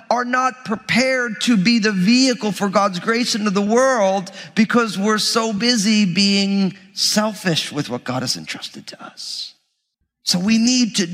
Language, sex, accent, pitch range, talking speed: English, male, American, 190-235 Hz, 160 wpm